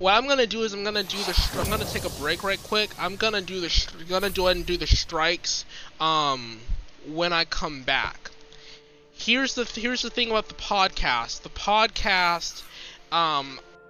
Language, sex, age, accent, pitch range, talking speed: English, male, 20-39, American, 140-180 Hz, 205 wpm